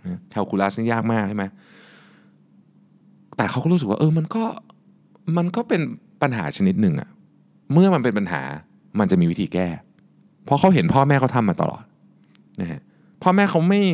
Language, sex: Thai, male